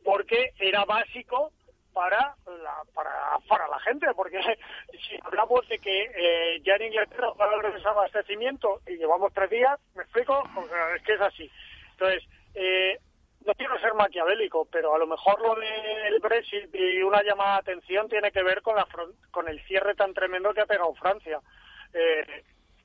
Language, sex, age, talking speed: Spanish, male, 30-49, 180 wpm